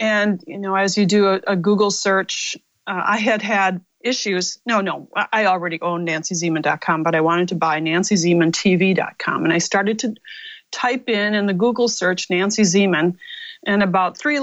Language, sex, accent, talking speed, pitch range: English, female, American, 175 wpm, 180-220 Hz